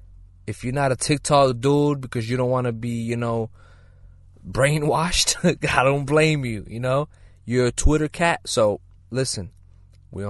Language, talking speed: English, 165 wpm